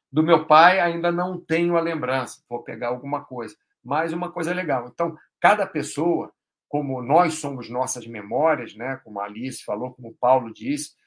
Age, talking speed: 50-69, 180 wpm